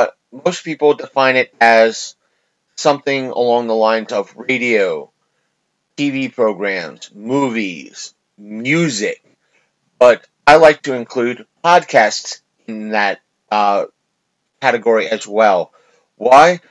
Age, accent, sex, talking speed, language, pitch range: 30-49, American, male, 100 wpm, English, 110-155 Hz